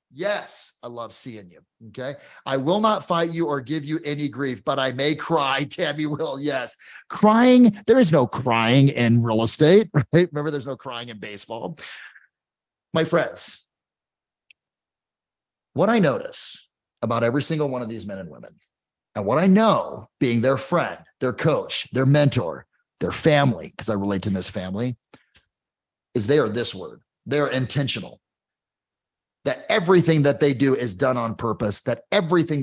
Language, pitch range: English, 115-155 Hz